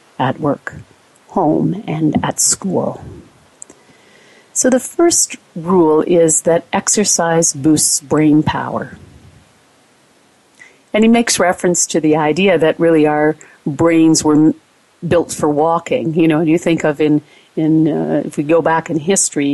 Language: English